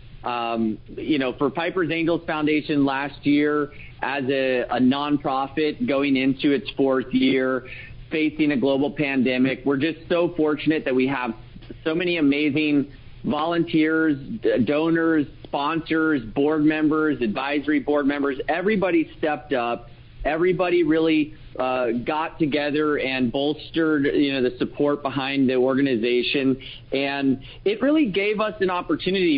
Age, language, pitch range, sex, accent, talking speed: 40-59, English, 130-155 Hz, male, American, 130 wpm